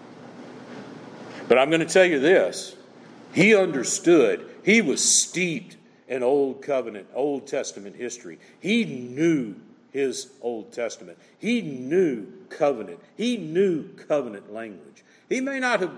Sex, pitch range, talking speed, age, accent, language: male, 125-160 Hz, 130 wpm, 50-69, American, English